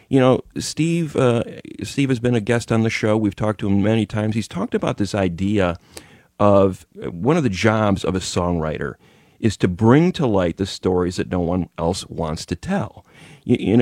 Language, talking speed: English, 200 wpm